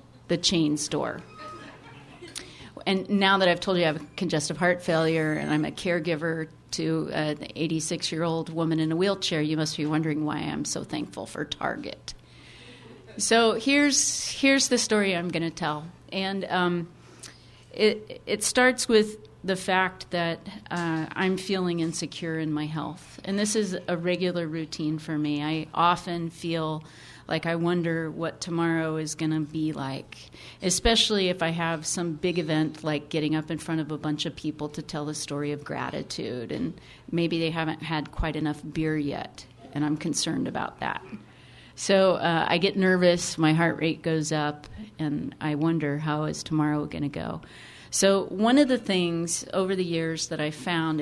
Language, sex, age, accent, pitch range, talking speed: English, female, 40-59, American, 155-180 Hz, 175 wpm